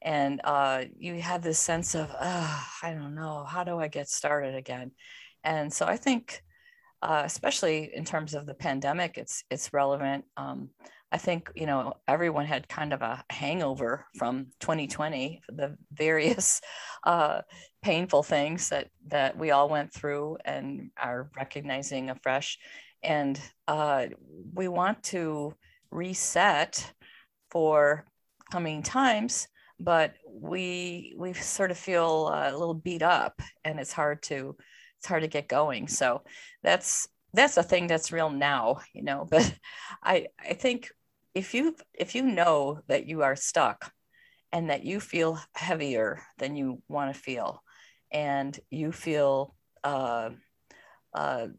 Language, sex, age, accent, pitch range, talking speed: English, female, 40-59, American, 140-175 Hz, 145 wpm